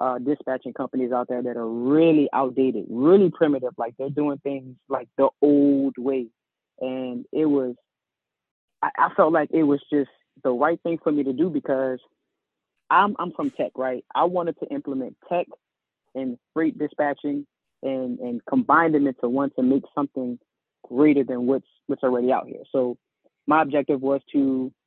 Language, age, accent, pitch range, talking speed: English, 20-39, American, 130-160 Hz, 170 wpm